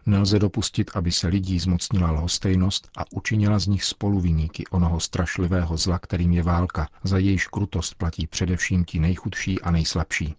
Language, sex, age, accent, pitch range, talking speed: Czech, male, 50-69, native, 85-95 Hz, 155 wpm